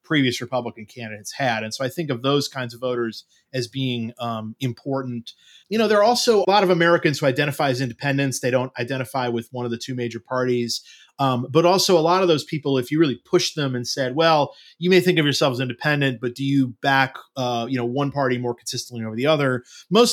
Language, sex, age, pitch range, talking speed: English, male, 30-49, 125-160 Hz, 235 wpm